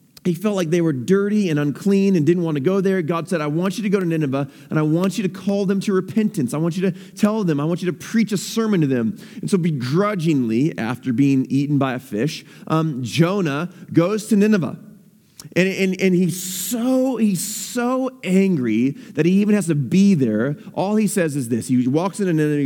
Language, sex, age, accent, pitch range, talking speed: English, male, 30-49, American, 155-230 Hz, 230 wpm